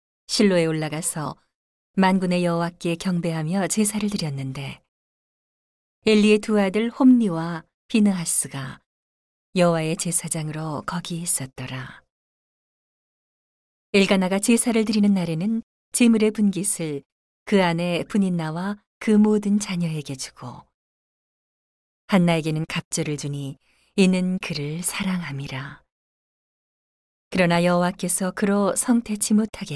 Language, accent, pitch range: Korean, native, 150-195 Hz